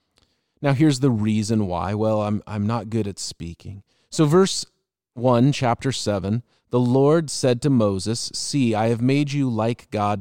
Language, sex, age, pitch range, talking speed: English, male, 30-49, 105-135 Hz, 170 wpm